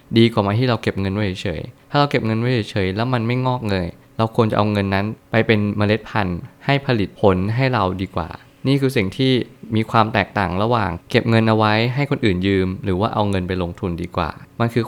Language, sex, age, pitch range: Thai, male, 20-39, 100-125 Hz